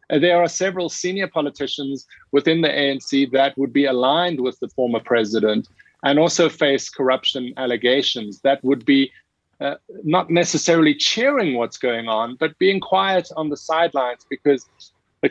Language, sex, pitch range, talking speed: English, male, 130-160 Hz, 155 wpm